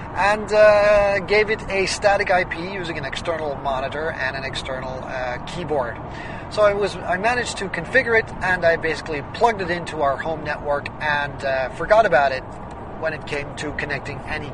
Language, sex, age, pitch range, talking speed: English, male, 30-49, 145-190 Hz, 180 wpm